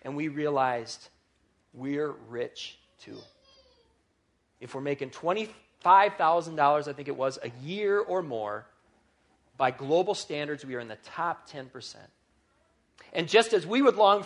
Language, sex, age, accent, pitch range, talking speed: English, male, 40-59, American, 130-175 Hz, 140 wpm